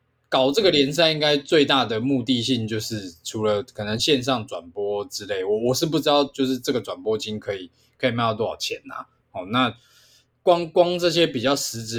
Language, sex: Chinese, male